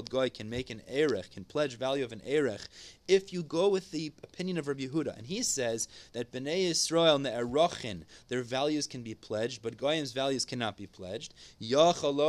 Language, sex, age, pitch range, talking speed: English, male, 30-49, 125-165 Hz, 200 wpm